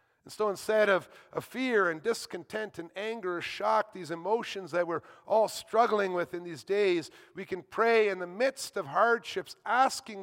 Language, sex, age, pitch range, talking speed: English, male, 50-69, 155-220 Hz, 170 wpm